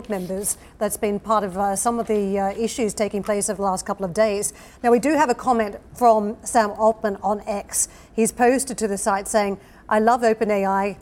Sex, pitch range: female, 205-230 Hz